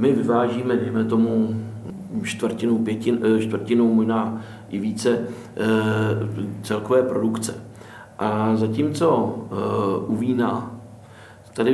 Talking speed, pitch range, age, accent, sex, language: 80 wpm, 110-130 Hz, 50-69, native, male, Czech